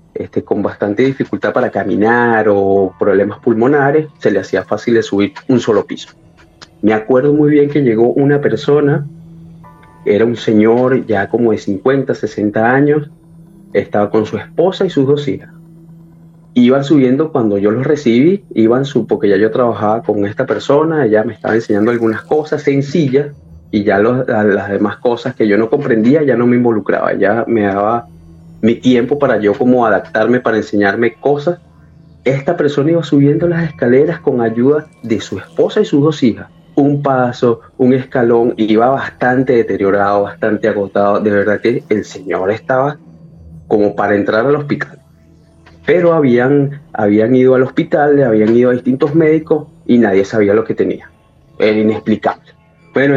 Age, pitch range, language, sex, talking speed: 30-49, 105-145 Hz, Spanish, male, 165 wpm